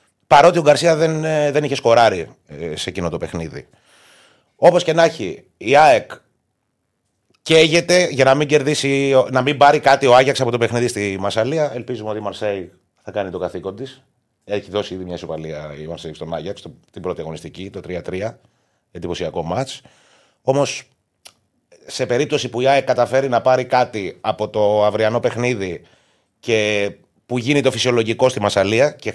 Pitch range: 105-130 Hz